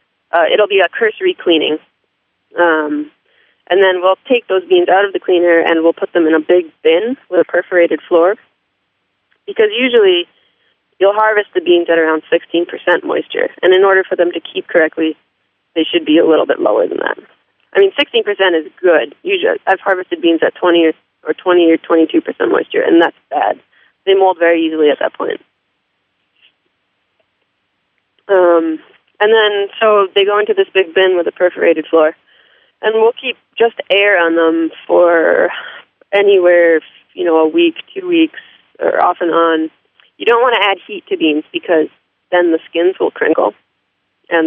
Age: 30-49